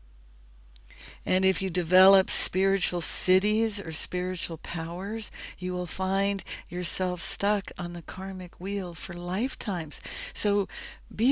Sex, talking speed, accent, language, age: female, 115 wpm, American, English, 60-79